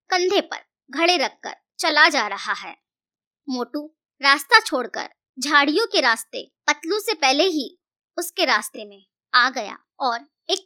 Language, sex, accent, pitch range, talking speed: Hindi, male, native, 255-350 Hz, 140 wpm